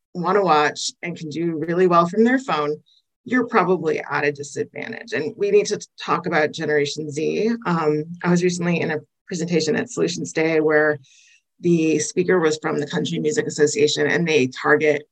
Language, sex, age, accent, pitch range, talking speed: English, female, 30-49, American, 150-190 Hz, 180 wpm